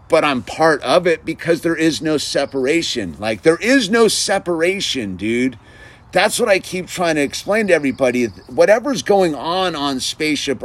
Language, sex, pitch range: English, male, 120-160 Hz